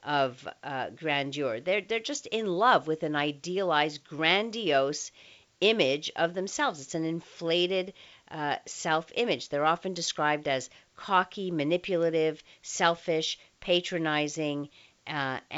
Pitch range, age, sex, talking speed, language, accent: 145-190 Hz, 50-69, female, 110 wpm, English, American